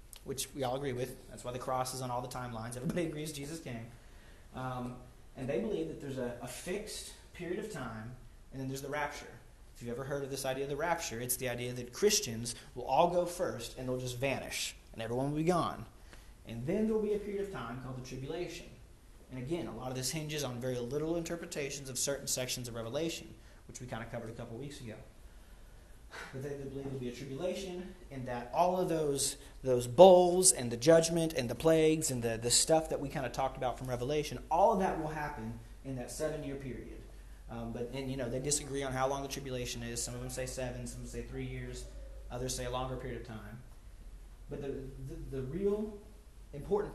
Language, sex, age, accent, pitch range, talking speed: English, male, 30-49, American, 120-150 Hz, 225 wpm